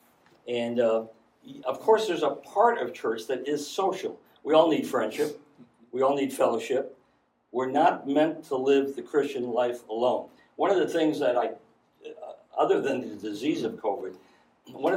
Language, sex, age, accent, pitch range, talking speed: English, male, 50-69, American, 120-165 Hz, 170 wpm